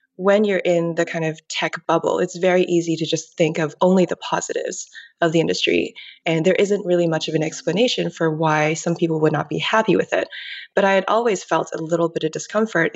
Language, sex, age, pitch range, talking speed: English, female, 20-39, 160-185 Hz, 225 wpm